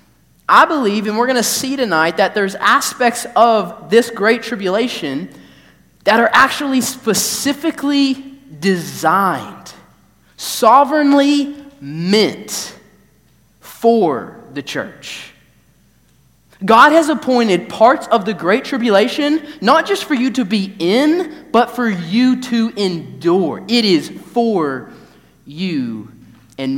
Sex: male